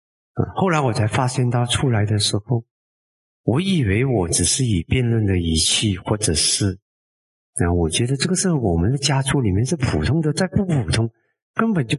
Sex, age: male, 50-69